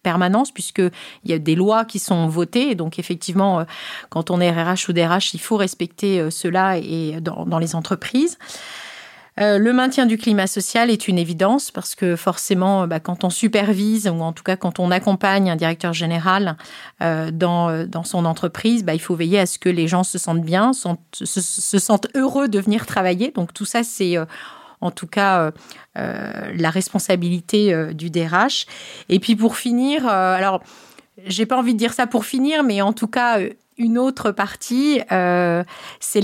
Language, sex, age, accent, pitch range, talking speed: French, female, 40-59, French, 175-215 Hz, 190 wpm